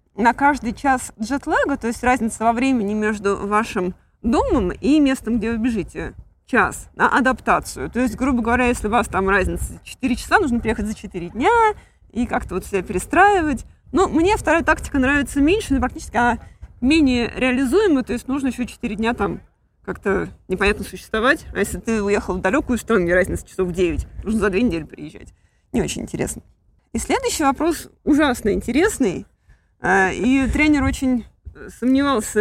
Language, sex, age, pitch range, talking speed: Russian, female, 20-39, 220-300 Hz, 165 wpm